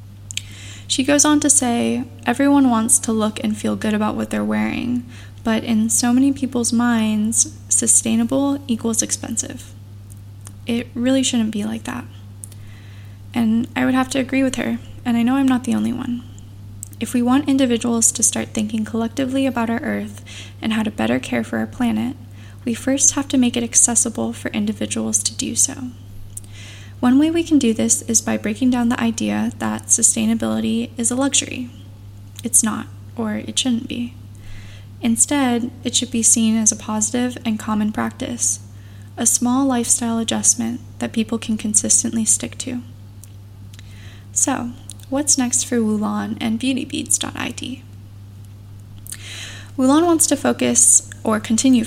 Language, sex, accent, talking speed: English, female, American, 155 wpm